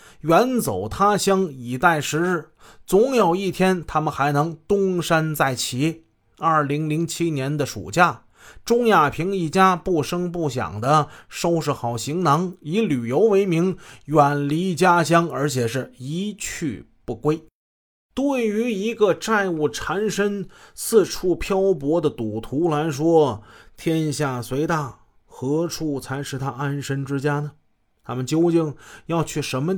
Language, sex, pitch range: Chinese, male, 130-170 Hz